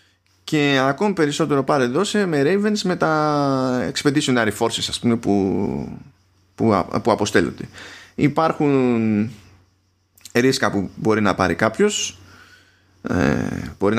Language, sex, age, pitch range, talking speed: Greek, male, 20-39, 105-145 Hz, 105 wpm